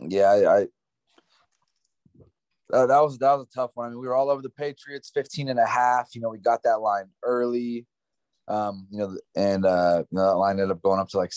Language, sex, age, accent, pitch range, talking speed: English, male, 20-39, American, 95-120 Hz, 240 wpm